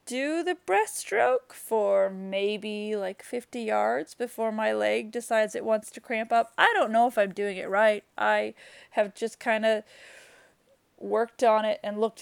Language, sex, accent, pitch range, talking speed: English, female, American, 200-240 Hz, 165 wpm